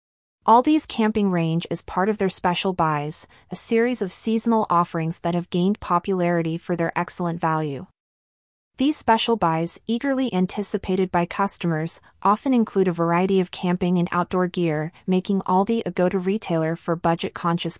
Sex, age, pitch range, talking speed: female, 30-49, 170-205 Hz, 150 wpm